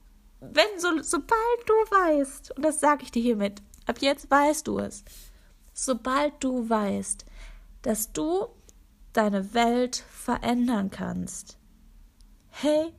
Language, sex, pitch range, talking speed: German, female, 215-300 Hz, 115 wpm